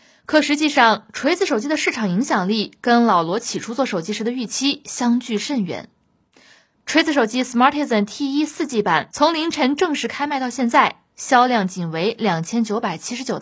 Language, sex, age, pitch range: Chinese, female, 20-39, 200-295 Hz